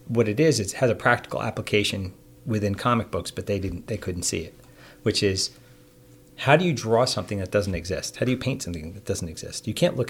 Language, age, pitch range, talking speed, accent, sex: English, 40-59, 95-125 Hz, 230 wpm, American, male